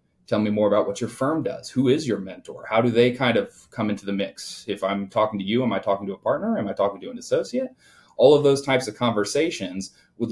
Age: 30-49